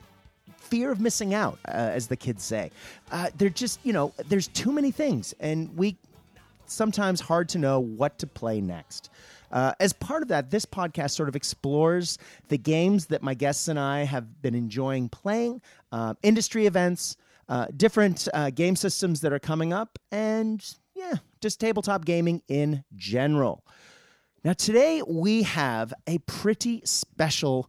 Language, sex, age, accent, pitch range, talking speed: English, male, 30-49, American, 130-180 Hz, 165 wpm